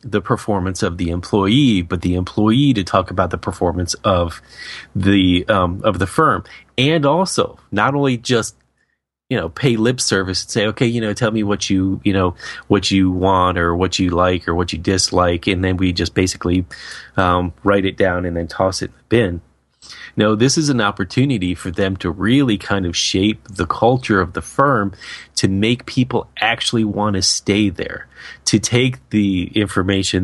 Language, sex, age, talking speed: English, male, 30-49, 190 wpm